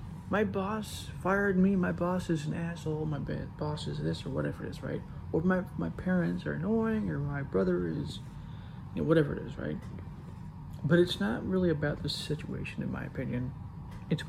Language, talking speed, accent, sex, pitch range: English, 190 wpm, American, male, 140-170 Hz